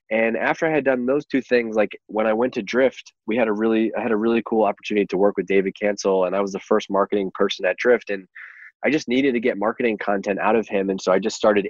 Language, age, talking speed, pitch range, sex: English, 20-39, 275 wpm, 95-110 Hz, male